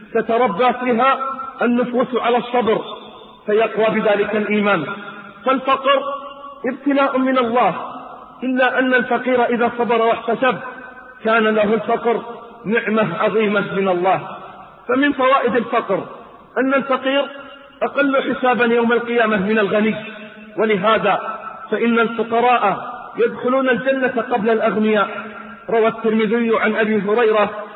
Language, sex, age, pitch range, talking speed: Arabic, male, 40-59, 210-245 Hz, 105 wpm